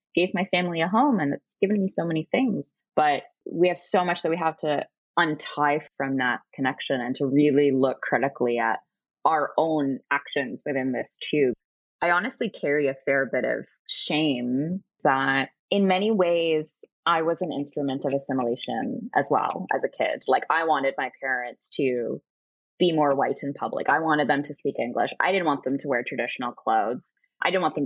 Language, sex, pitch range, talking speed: English, female, 145-200 Hz, 190 wpm